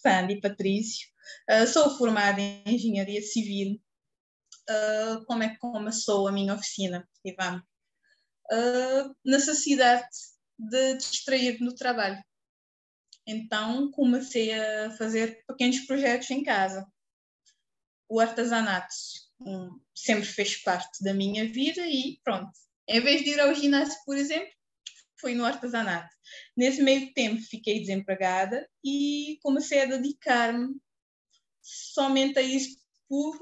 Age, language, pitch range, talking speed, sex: 20-39, Portuguese, 200-265 Hz, 120 wpm, female